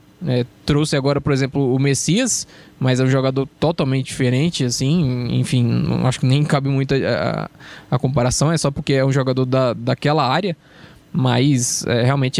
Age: 20-39